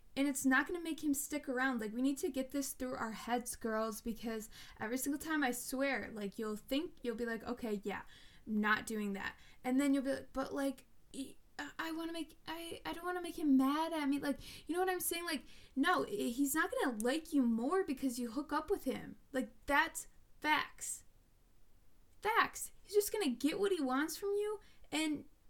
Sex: female